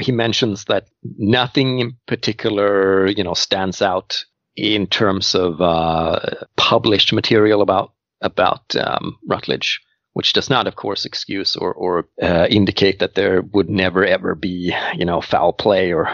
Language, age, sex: English, 40-59, male